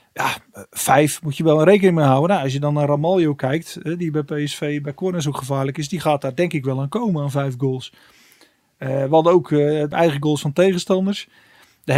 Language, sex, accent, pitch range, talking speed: Dutch, male, Dutch, 150-180 Hz, 225 wpm